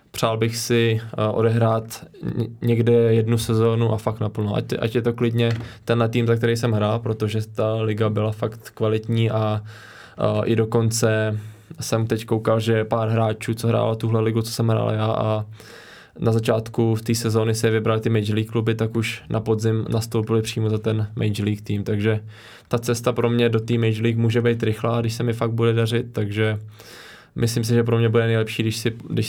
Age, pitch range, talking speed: 20-39, 110-115 Hz, 200 wpm